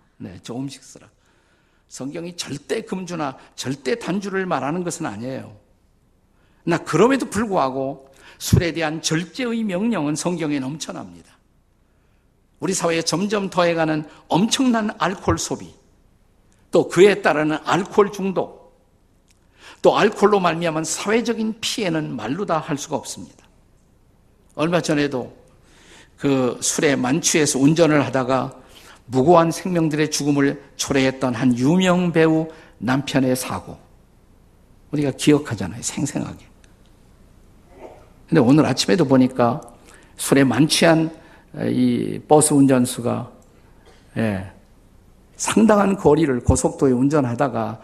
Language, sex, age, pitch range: Korean, male, 50-69, 120-170 Hz